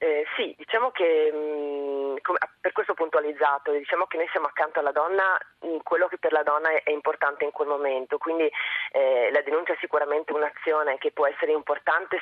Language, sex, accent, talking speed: Italian, female, native, 185 wpm